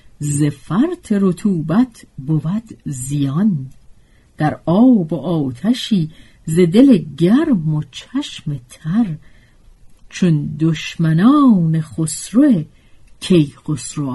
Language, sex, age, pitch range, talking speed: Persian, female, 50-69, 145-200 Hz, 85 wpm